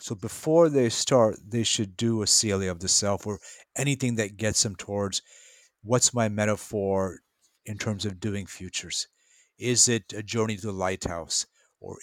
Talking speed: 170 wpm